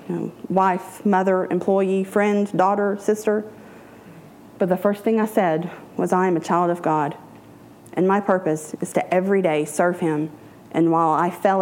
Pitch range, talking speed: 160-190 Hz, 175 wpm